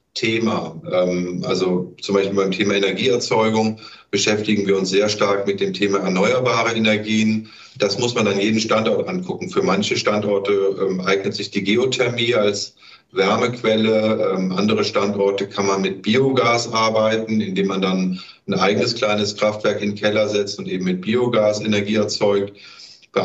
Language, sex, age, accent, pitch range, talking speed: German, male, 50-69, German, 100-115 Hz, 150 wpm